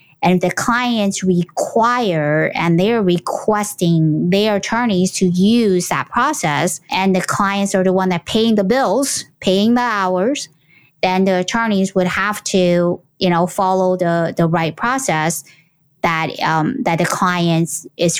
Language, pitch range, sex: English, 165-190 Hz, female